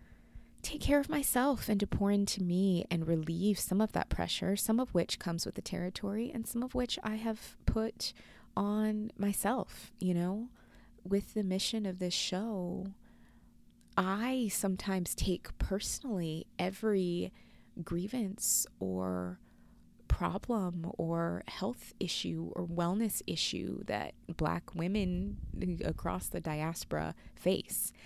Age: 20-39